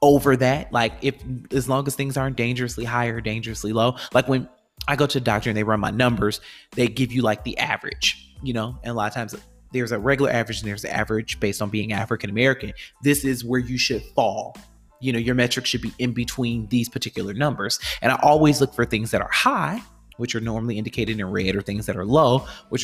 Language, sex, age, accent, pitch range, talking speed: English, male, 30-49, American, 115-145 Hz, 235 wpm